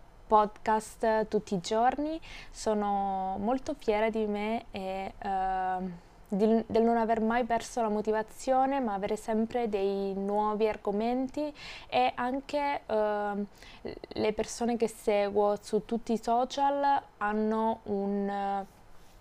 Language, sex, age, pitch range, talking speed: Italian, female, 20-39, 205-240 Hz, 110 wpm